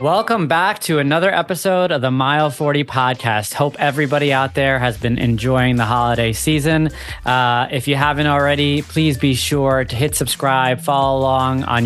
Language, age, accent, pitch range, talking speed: English, 20-39, American, 125-150 Hz, 170 wpm